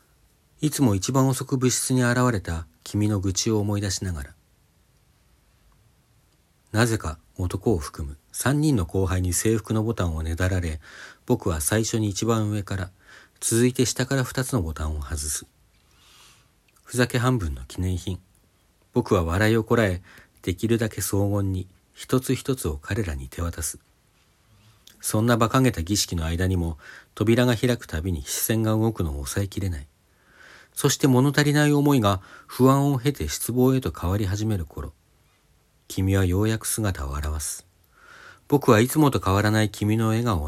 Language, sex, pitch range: Japanese, male, 85-115 Hz